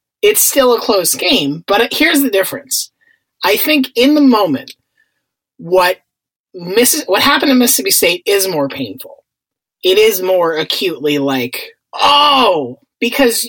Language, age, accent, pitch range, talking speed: English, 30-49, American, 175-280 Hz, 140 wpm